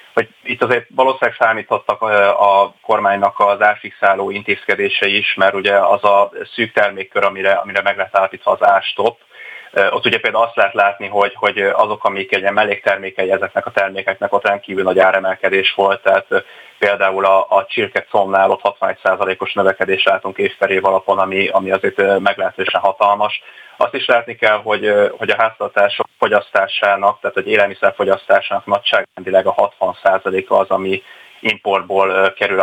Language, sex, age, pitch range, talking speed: Hungarian, male, 30-49, 95-100 Hz, 145 wpm